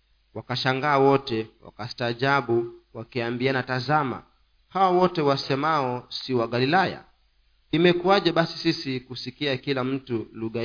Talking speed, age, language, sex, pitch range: 100 wpm, 40-59, Swahili, male, 115-150 Hz